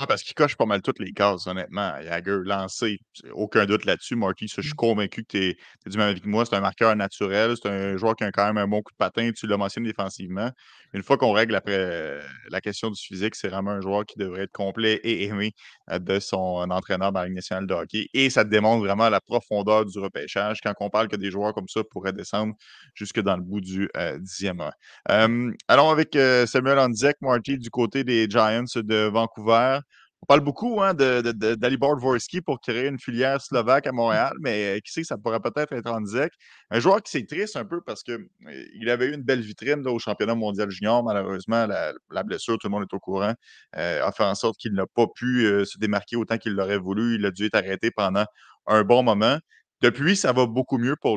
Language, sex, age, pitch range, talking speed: French, male, 30-49, 100-120 Hz, 235 wpm